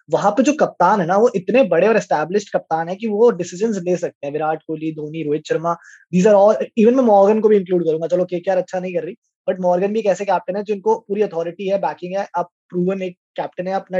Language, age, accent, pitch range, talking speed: Hindi, 20-39, native, 180-220 Hz, 220 wpm